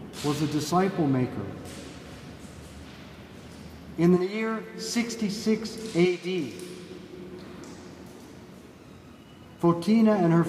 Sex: male